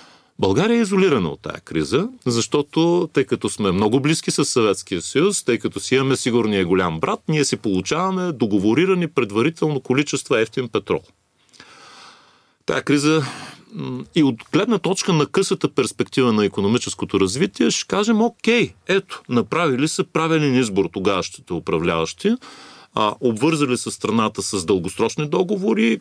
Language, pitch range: Bulgarian, 110-165 Hz